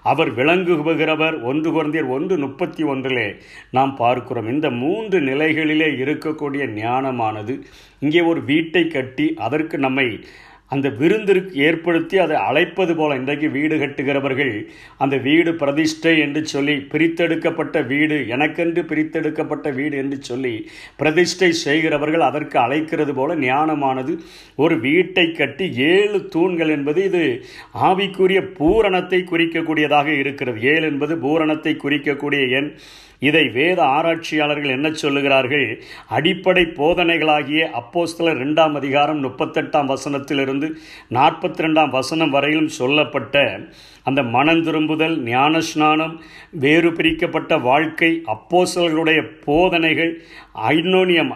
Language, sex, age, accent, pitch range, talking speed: Tamil, male, 50-69, native, 145-170 Hz, 100 wpm